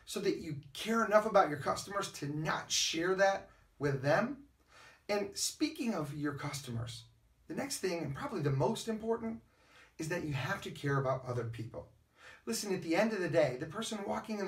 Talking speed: 195 wpm